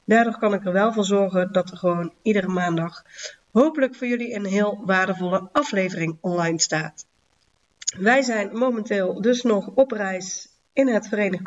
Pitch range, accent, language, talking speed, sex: 180-225 Hz, Dutch, Dutch, 160 wpm, female